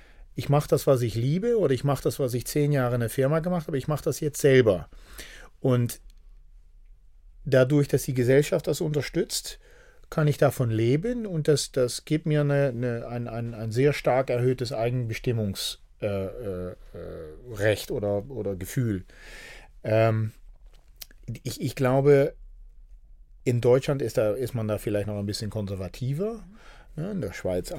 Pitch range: 115-145 Hz